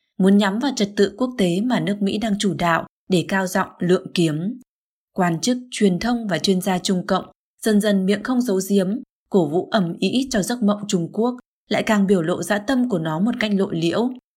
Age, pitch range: 20-39, 180-220 Hz